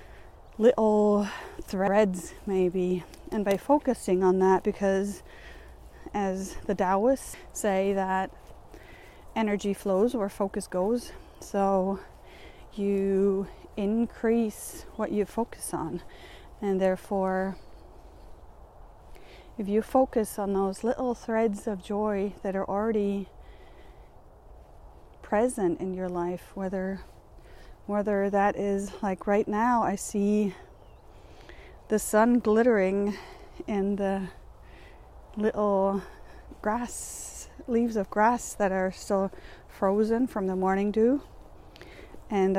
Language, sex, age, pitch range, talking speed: English, female, 30-49, 190-230 Hz, 100 wpm